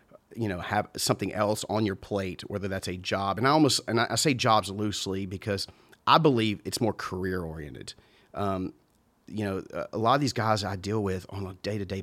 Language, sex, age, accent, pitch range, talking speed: English, male, 30-49, American, 95-110 Hz, 205 wpm